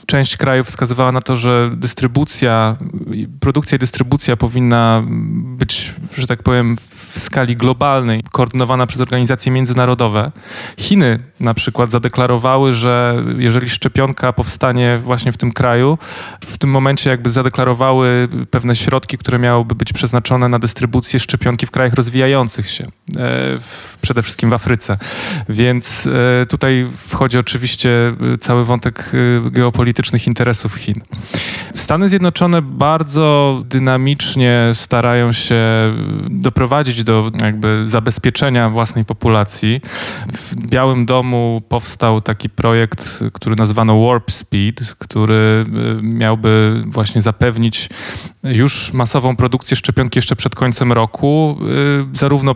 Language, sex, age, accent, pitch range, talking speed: Polish, male, 20-39, native, 115-130 Hz, 115 wpm